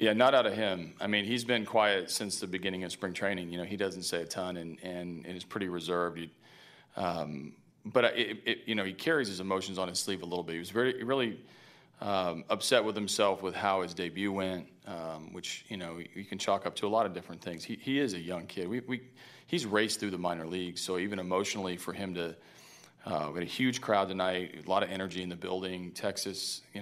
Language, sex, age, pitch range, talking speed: English, male, 40-59, 85-100 Hz, 245 wpm